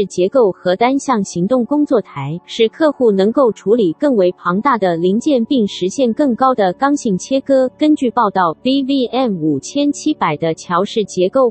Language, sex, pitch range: Chinese, female, 185-270 Hz